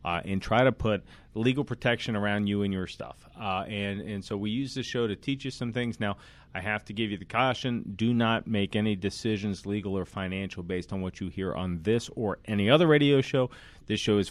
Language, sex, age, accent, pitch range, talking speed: English, male, 40-59, American, 95-120 Hz, 235 wpm